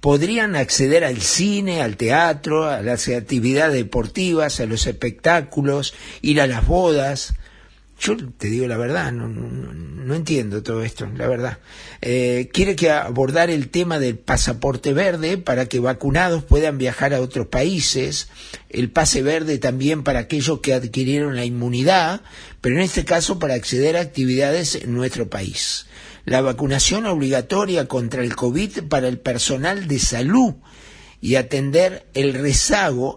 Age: 50-69